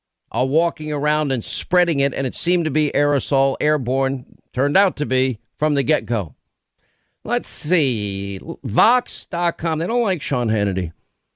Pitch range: 135-175 Hz